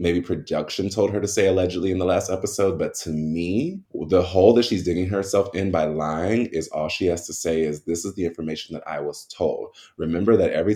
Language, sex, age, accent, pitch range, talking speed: English, male, 20-39, American, 80-100 Hz, 230 wpm